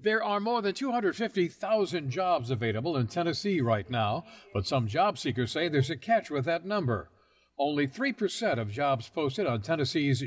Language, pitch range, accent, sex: English, 115-160 Hz, American, male